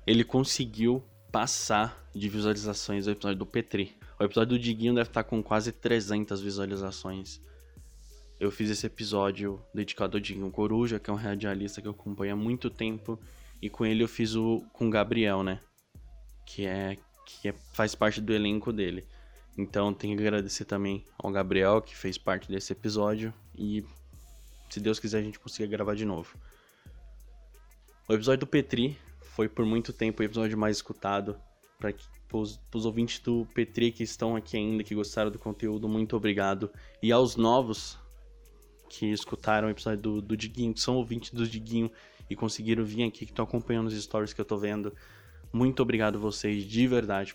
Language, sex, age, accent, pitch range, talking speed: Portuguese, male, 10-29, Brazilian, 100-115 Hz, 175 wpm